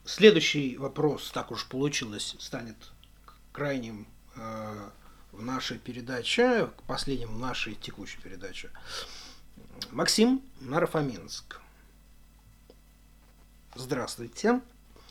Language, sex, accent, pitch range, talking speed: Russian, male, native, 120-185 Hz, 80 wpm